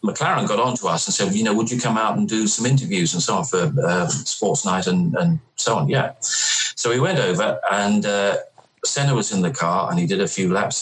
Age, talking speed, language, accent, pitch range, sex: 40-59, 255 wpm, English, British, 100-165 Hz, male